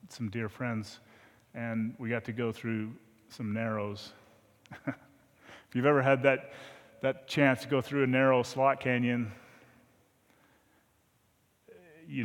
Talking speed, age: 125 wpm, 30-49